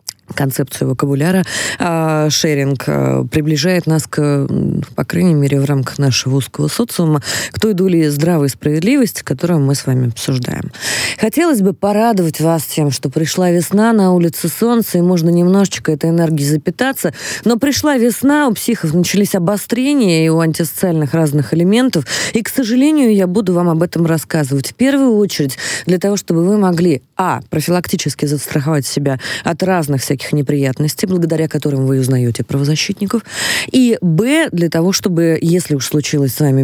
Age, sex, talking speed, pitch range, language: 20-39, female, 155 wpm, 145-185 Hz, Russian